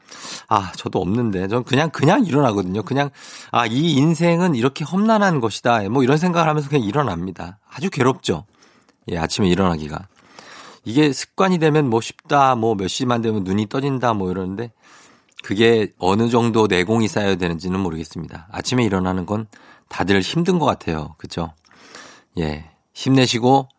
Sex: male